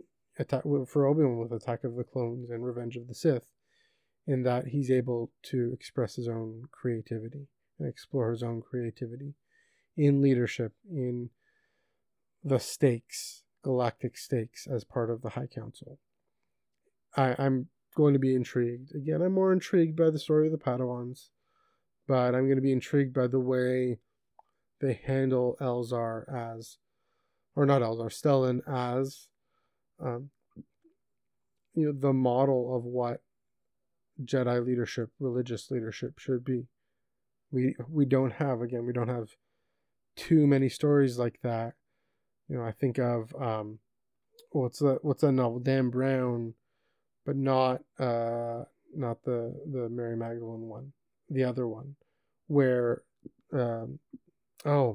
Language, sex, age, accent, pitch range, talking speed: English, male, 30-49, American, 120-140 Hz, 140 wpm